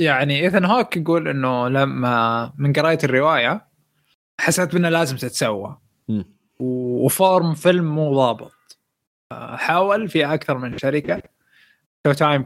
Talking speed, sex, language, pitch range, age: 115 wpm, male, Arabic, 130-160 Hz, 20-39